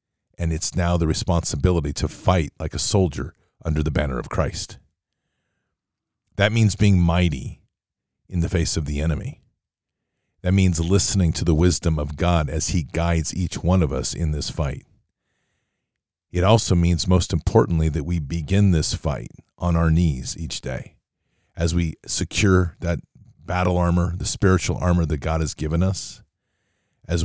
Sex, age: male, 40-59